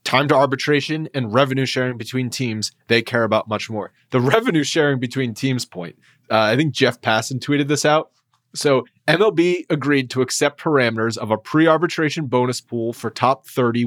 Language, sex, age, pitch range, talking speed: English, male, 30-49, 120-155 Hz, 180 wpm